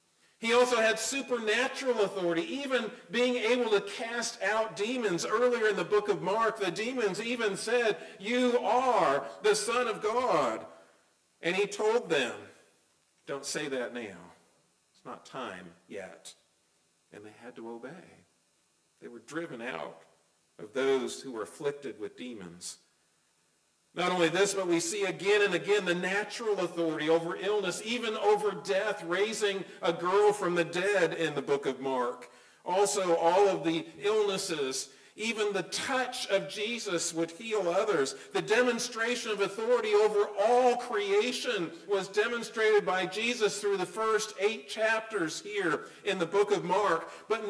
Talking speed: 150 wpm